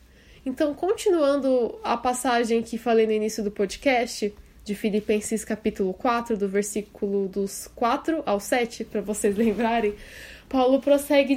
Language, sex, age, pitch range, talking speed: Portuguese, female, 10-29, 225-275 Hz, 130 wpm